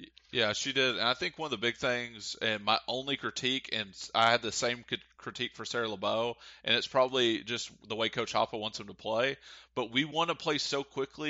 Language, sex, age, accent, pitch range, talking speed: English, male, 30-49, American, 115-130 Hz, 230 wpm